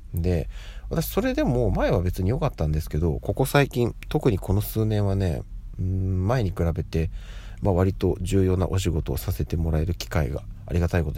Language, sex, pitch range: Japanese, male, 80-115 Hz